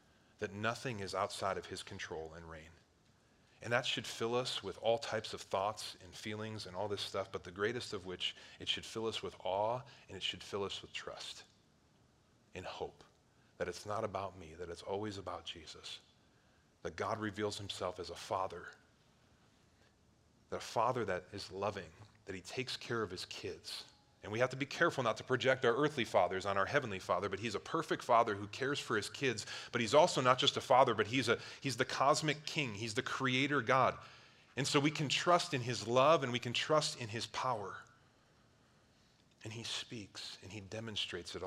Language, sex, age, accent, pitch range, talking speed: English, male, 30-49, American, 100-130 Hz, 205 wpm